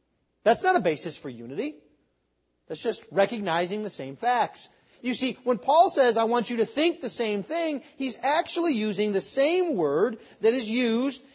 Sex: male